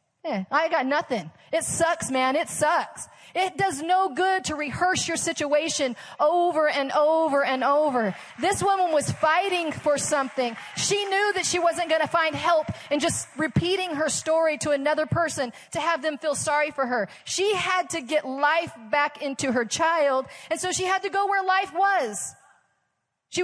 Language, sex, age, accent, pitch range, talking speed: English, female, 40-59, American, 255-325 Hz, 180 wpm